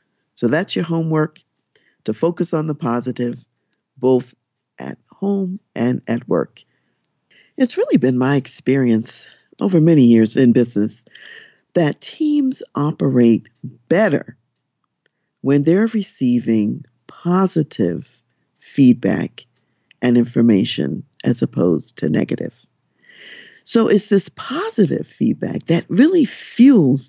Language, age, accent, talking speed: English, 50-69, American, 105 wpm